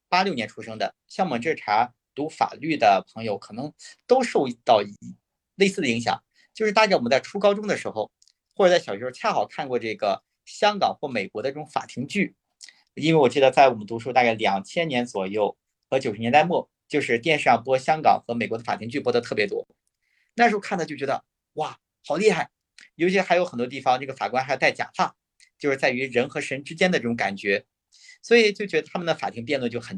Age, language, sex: 50-69, Chinese, male